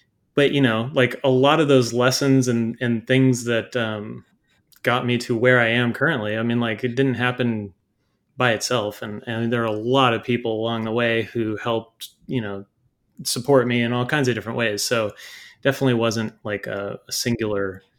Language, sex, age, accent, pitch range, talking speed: English, male, 30-49, American, 115-140 Hz, 195 wpm